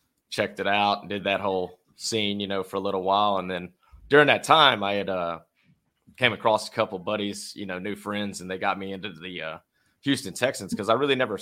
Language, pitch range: English, 95-110 Hz